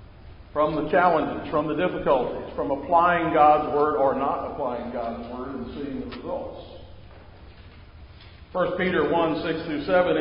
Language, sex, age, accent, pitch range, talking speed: English, male, 50-69, American, 135-165 Hz, 135 wpm